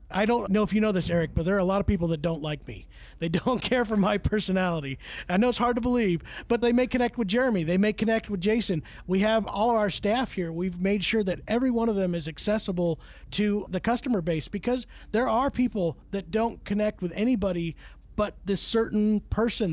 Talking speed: 230 wpm